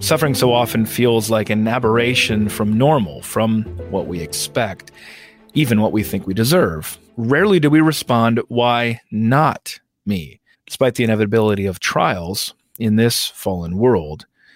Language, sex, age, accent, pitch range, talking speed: English, male, 40-59, American, 110-150 Hz, 145 wpm